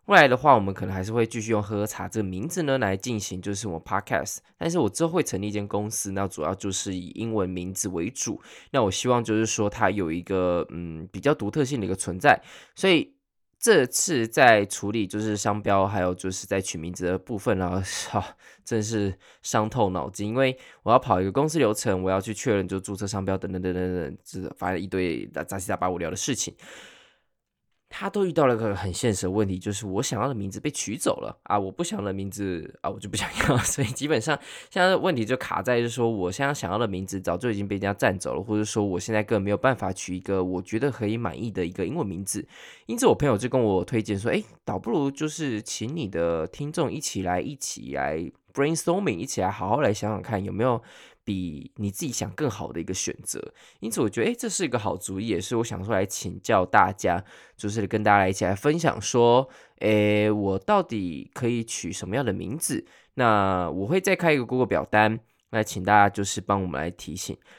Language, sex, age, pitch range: Chinese, male, 20-39, 95-120 Hz